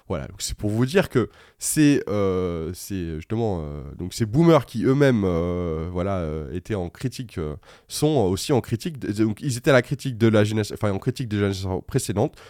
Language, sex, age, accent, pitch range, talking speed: French, male, 20-39, French, 95-130 Hz, 215 wpm